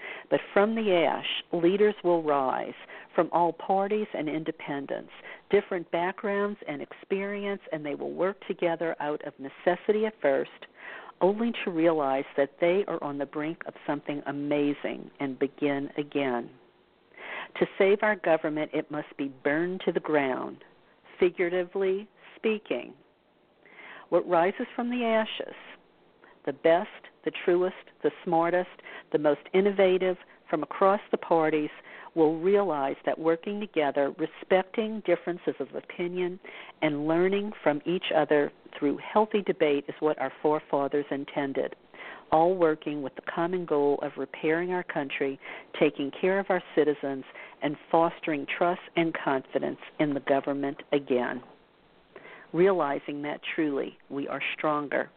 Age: 50-69